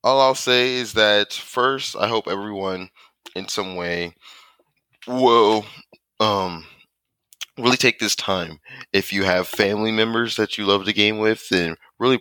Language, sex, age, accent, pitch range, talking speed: English, male, 20-39, American, 90-110 Hz, 150 wpm